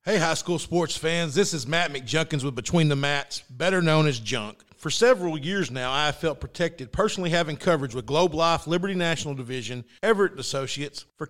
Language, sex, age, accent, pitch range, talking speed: English, male, 50-69, American, 140-185 Hz, 195 wpm